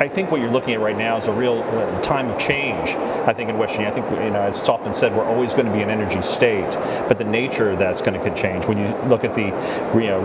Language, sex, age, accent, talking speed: English, male, 40-59, American, 300 wpm